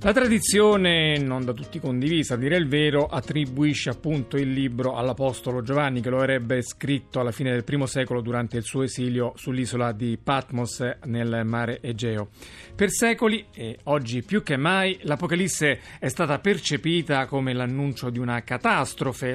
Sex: male